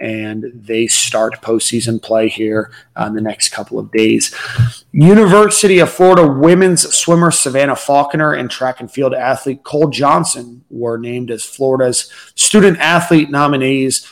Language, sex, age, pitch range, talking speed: English, male, 30-49, 120-160 Hz, 140 wpm